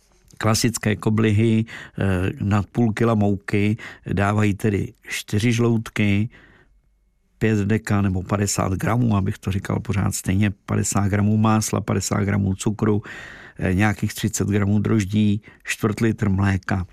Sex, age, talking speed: male, 50-69, 115 wpm